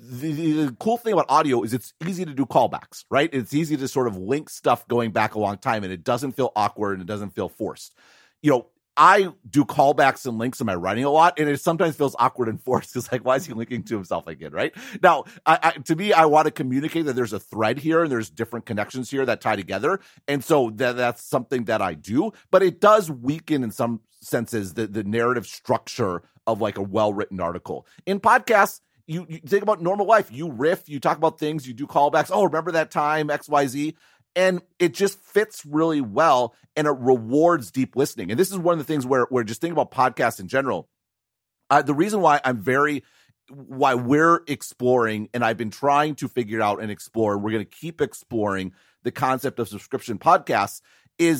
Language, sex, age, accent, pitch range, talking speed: English, male, 40-59, American, 115-160 Hz, 220 wpm